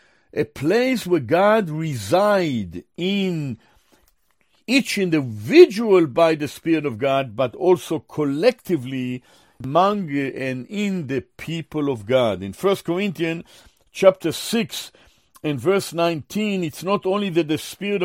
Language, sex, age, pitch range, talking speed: English, male, 50-69, 150-205 Hz, 125 wpm